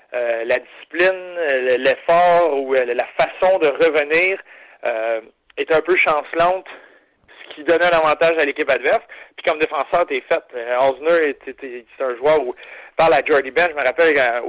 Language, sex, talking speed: French, male, 180 wpm